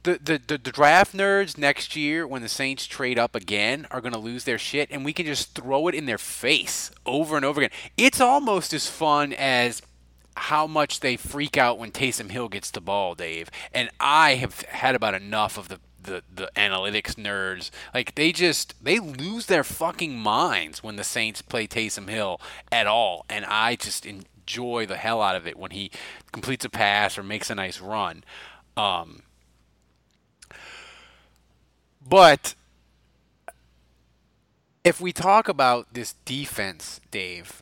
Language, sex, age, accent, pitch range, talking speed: English, male, 30-49, American, 105-155 Hz, 170 wpm